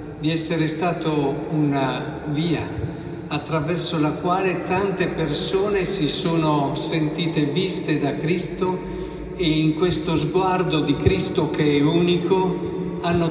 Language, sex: Italian, male